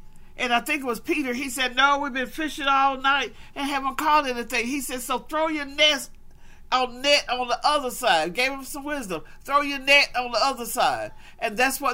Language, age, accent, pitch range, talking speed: English, 50-69, American, 225-280 Hz, 215 wpm